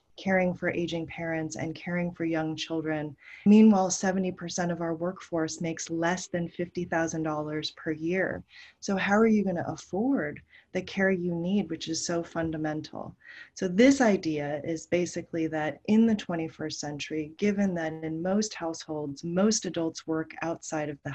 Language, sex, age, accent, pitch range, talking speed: English, female, 30-49, American, 160-200 Hz, 160 wpm